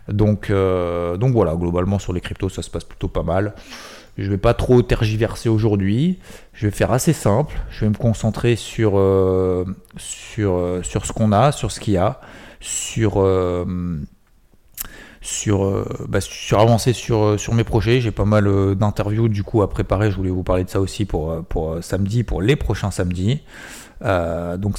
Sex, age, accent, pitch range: male, 30-49, French, 90-115 Hz